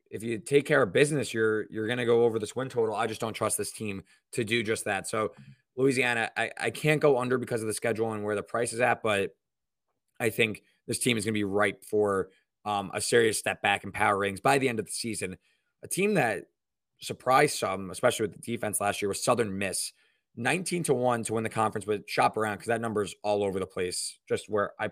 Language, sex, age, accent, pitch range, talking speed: English, male, 20-39, American, 100-130 Hz, 245 wpm